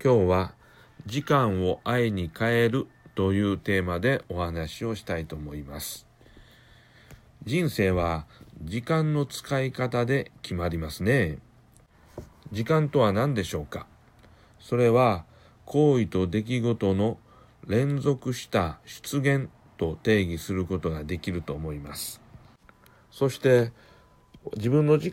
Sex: male